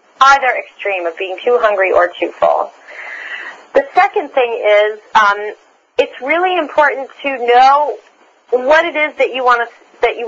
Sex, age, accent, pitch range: female, 30-49, American, 205-280 Hz